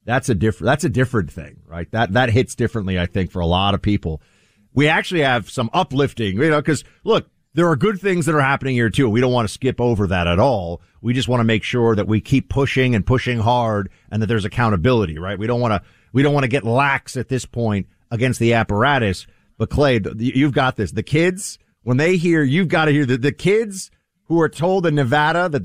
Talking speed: 240 wpm